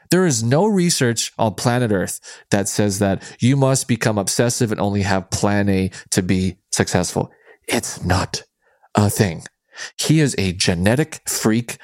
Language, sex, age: English, male, 20-39